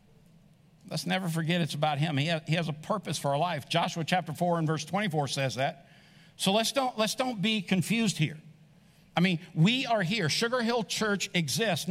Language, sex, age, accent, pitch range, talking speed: English, male, 60-79, American, 165-210 Hz, 190 wpm